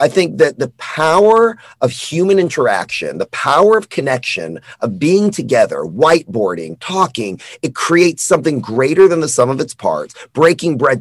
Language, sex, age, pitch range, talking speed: English, male, 40-59, 120-165 Hz, 160 wpm